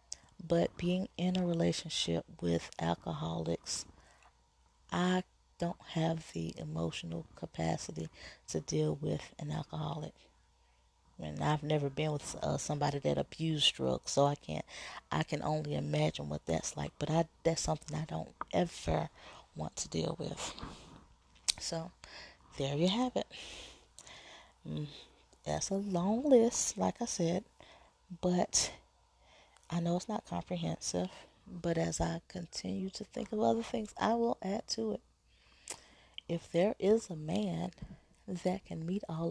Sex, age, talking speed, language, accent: female, 30-49, 135 wpm, English, American